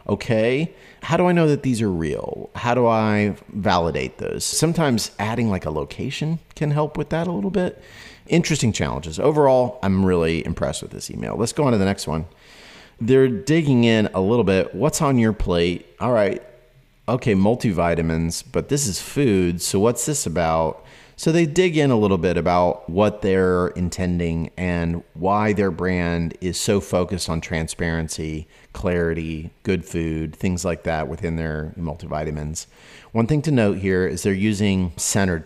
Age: 30-49